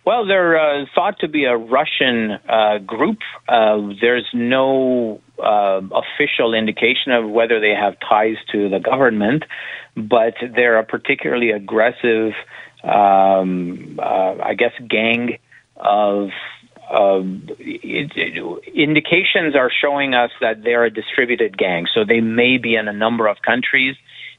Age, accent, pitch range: 50-69, American, 110-125 Hz